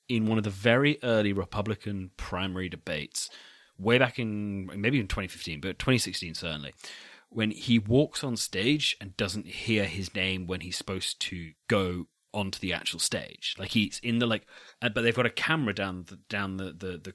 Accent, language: British, English